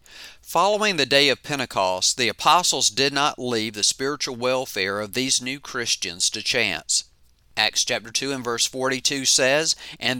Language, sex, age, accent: English, male, 50-69, American